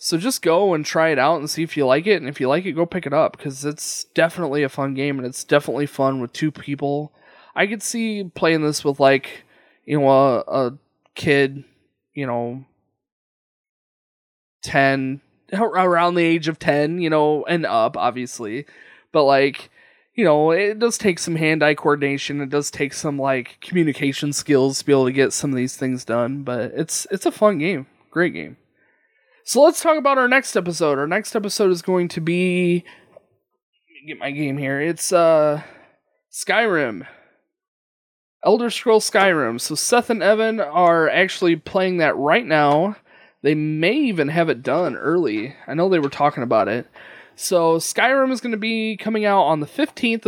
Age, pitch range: 20-39, 145-195 Hz